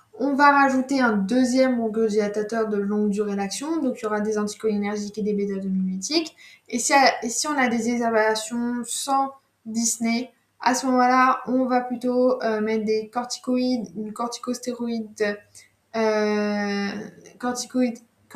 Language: French